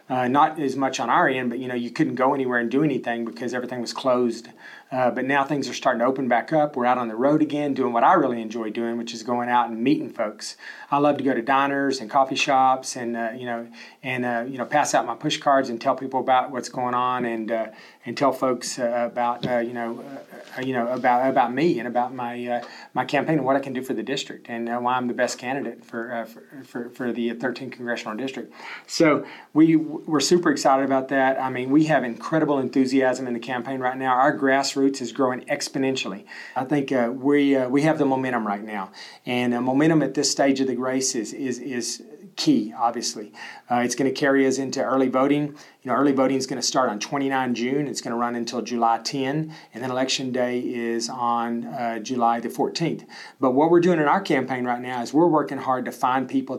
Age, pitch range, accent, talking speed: 30-49, 120-140 Hz, American, 240 wpm